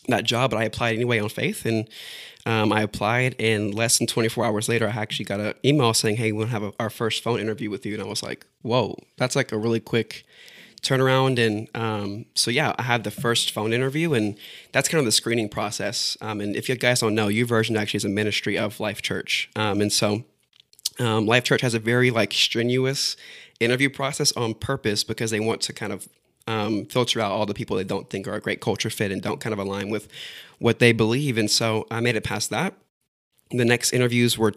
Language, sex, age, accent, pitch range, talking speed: English, male, 20-39, American, 105-125 Hz, 235 wpm